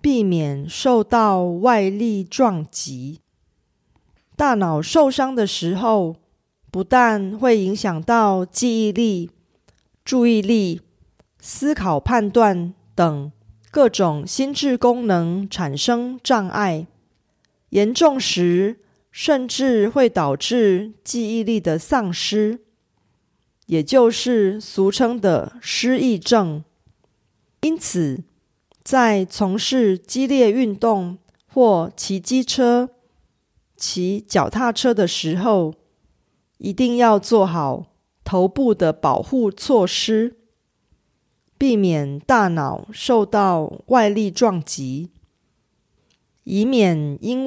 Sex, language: female, Korean